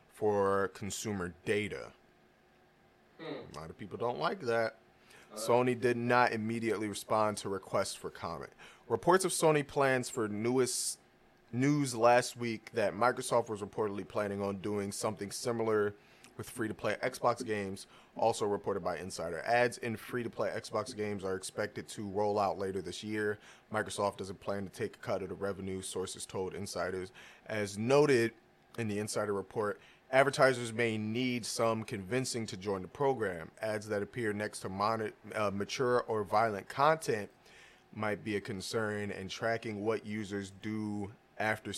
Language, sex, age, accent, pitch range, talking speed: English, male, 30-49, American, 100-120 Hz, 155 wpm